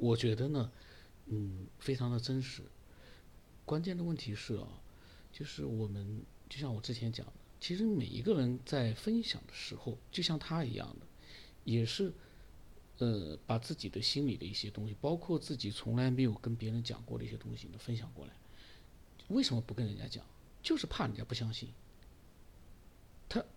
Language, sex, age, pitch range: Chinese, male, 50-69, 110-150 Hz